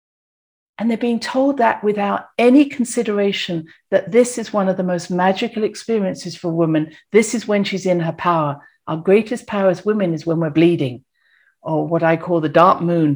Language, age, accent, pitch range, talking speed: English, 50-69, British, 165-220 Hz, 190 wpm